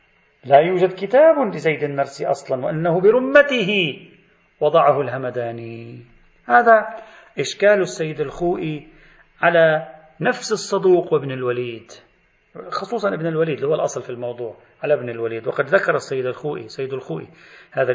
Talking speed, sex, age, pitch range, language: 125 wpm, male, 40-59, 135-200 Hz, Arabic